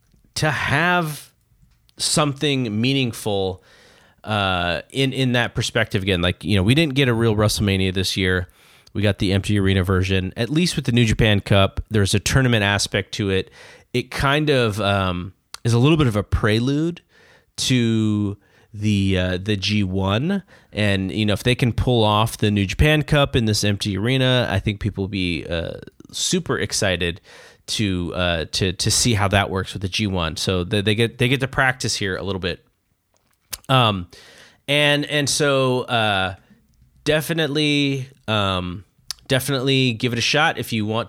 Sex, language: male, English